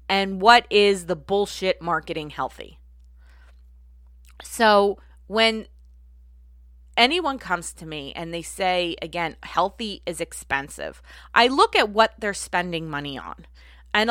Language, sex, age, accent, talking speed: English, female, 20-39, American, 125 wpm